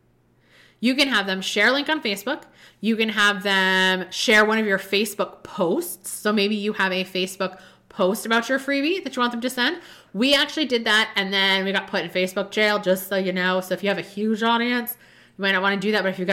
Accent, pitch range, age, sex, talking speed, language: American, 185-240 Hz, 20-39, female, 250 wpm, English